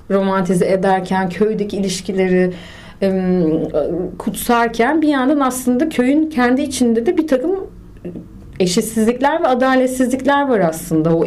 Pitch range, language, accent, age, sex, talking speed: 185-250 Hz, Turkish, native, 30-49, female, 110 wpm